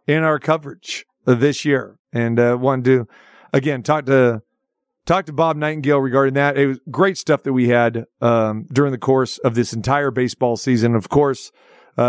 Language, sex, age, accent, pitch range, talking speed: English, male, 40-59, American, 120-140 Hz, 190 wpm